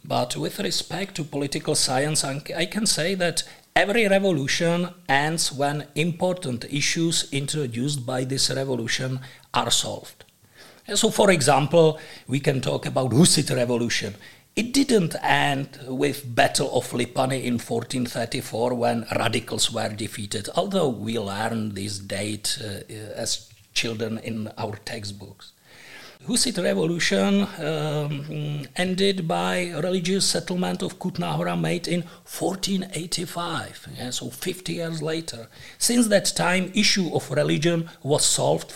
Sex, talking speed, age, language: male, 125 wpm, 50-69, Czech